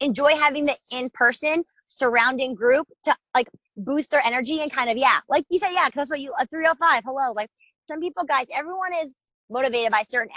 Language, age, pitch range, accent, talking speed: English, 20-39, 210-265 Hz, American, 205 wpm